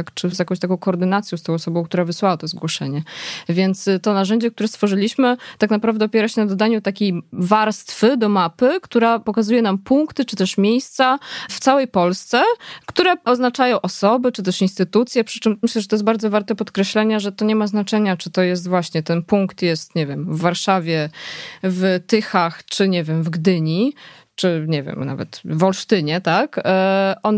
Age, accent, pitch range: 20-39, native, 180-215 Hz